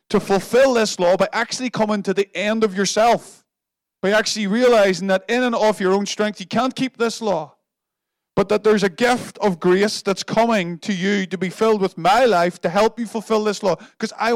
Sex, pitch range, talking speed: male, 185-230 Hz, 215 wpm